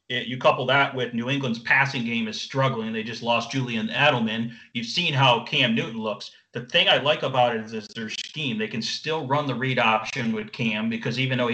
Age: 30-49